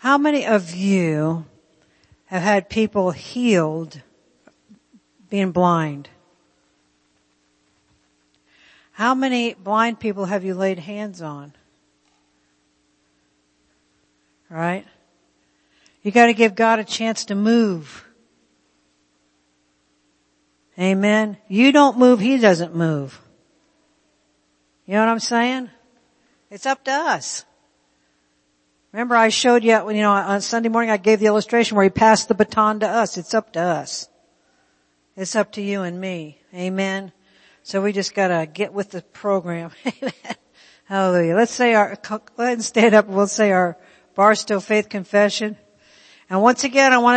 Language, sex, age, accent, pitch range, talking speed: English, female, 60-79, American, 145-220 Hz, 135 wpm